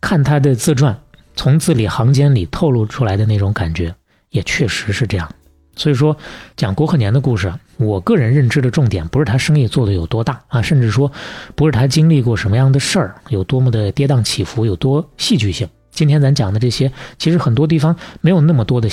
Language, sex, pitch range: Chinese, male, 105-150 Hz